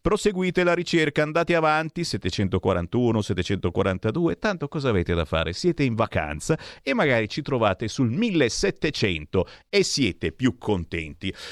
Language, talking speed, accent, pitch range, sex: Italian, 130 wpm, native, 115-190 Hz, male